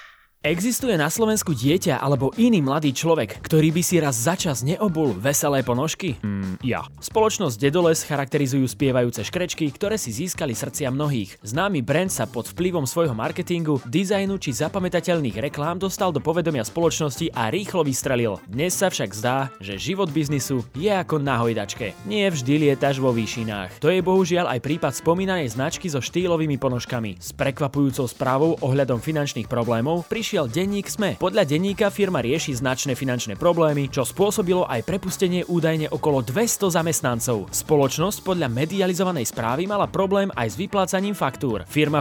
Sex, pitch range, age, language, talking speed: male, 130-180 Hz, 20-39, Slovak, 155 wpm